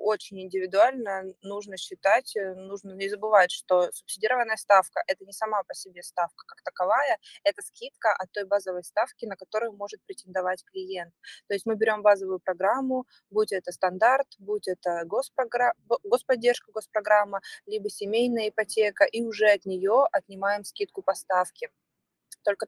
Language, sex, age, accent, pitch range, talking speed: Russian, female, 20-39, native, 185-235 Hz, 150 wpm